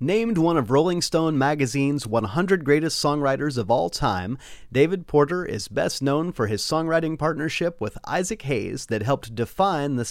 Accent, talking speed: American, 165 wpm